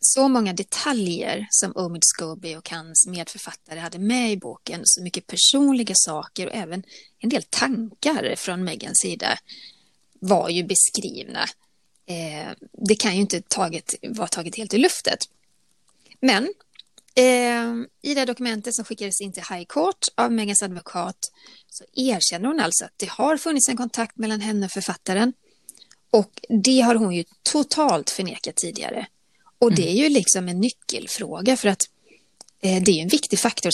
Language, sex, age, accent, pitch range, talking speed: English, female, 30-49, Swedish, 180-240 Hz, 155 wpm